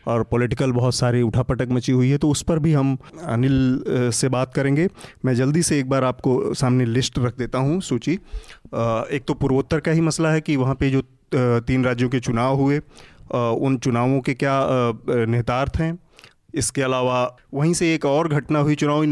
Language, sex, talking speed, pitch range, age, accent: Hindi, male, 190 wpm, 120-140 Hz, 30-49, native